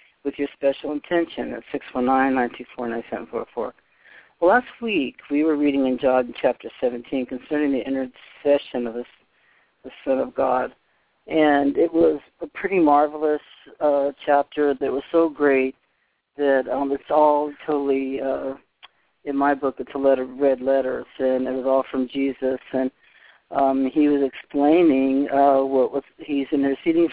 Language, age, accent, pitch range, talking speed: English, 50-69, American, 130-145 Hz, 155 wpm